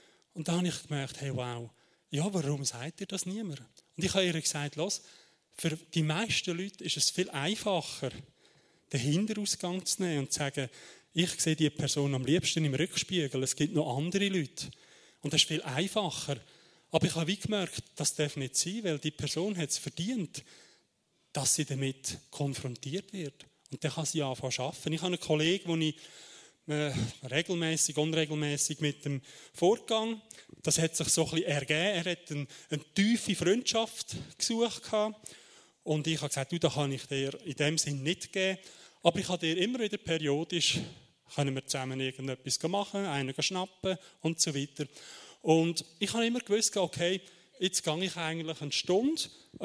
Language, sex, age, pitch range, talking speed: German, male, 30-49, 145-180 Hz, 180 wpm